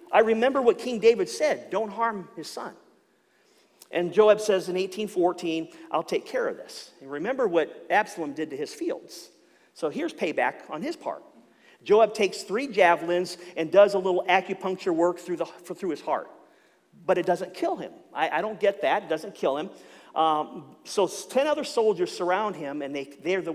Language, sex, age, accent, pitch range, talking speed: English, male, 50-69, American, 165-270 Hz, 185 wpm